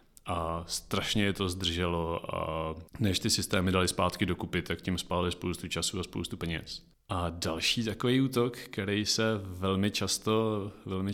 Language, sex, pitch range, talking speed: Czech, male, 90-105 Hz, 155 wpm